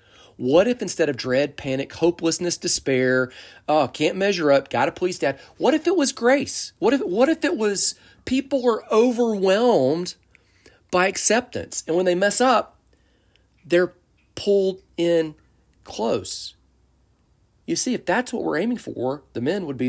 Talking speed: 155 wpm